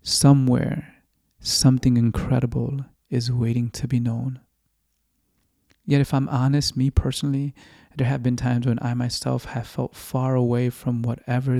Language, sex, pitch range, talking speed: English, male, 115-130 Hz, 140 wpm